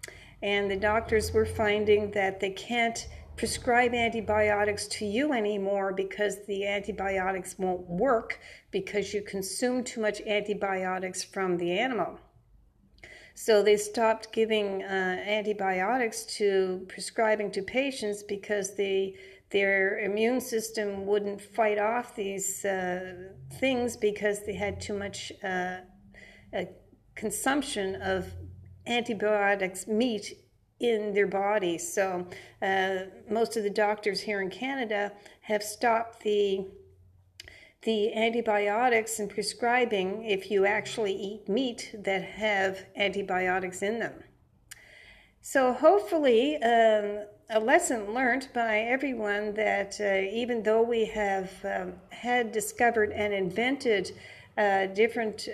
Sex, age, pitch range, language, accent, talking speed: female, 50-69, 195-225 Hz, English, American, 120 wpm